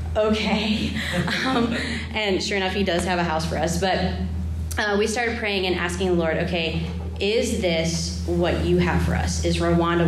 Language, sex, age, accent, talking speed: English, female, 30-49, American, 185 wpm